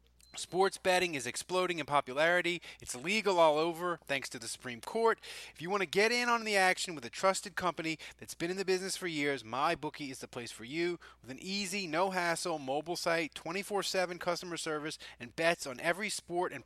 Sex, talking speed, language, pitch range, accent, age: male, 205 wpm, English, 145-180 Hz, American, 30-49